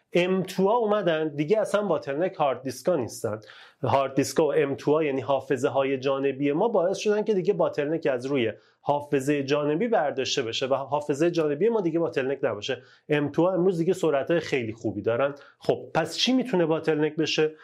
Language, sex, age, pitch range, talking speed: Persian, male, 30-49, 135-185 Hz, 175 wpm